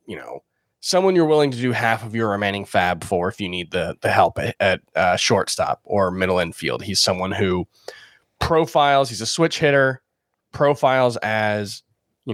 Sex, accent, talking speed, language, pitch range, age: male, American, 180 wpm, English, 105-145 Hz, 20-39